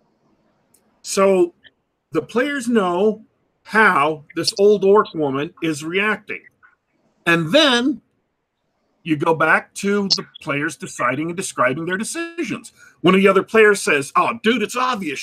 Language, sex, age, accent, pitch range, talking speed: English, male, 50-69, American, 180-235 Hz, 135 wpm